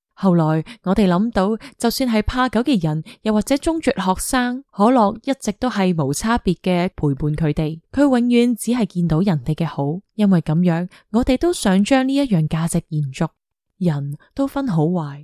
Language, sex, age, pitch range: Chinese, female, 20-39, 165-225 Hz